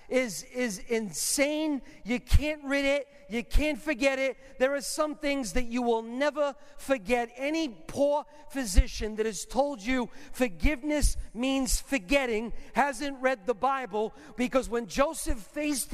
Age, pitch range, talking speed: 50-69, 240-290 Hz, 145 wpm